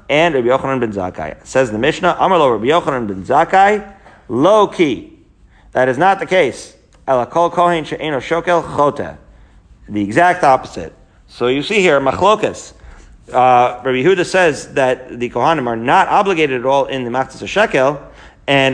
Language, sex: English, male